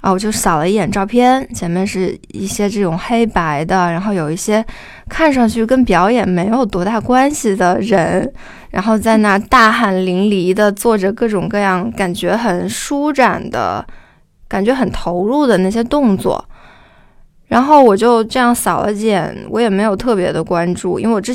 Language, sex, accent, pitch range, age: Chinese, female, native, 185-225 Hz, 20-39